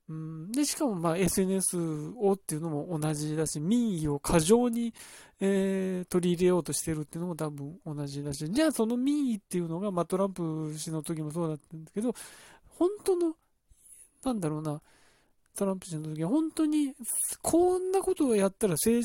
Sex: male